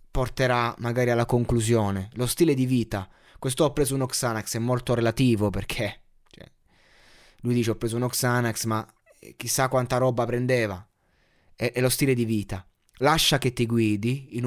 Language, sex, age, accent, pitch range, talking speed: Italian, male, 20-39, native, 105-145 Hz, 160 wpm